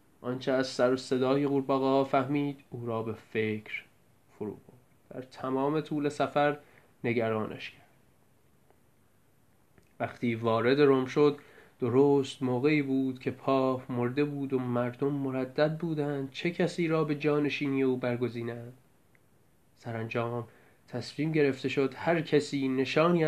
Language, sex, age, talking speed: French, male, 30-49, 125 wpm